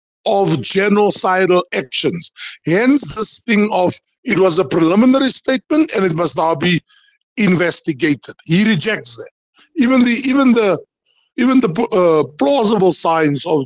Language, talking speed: English, 135 wpm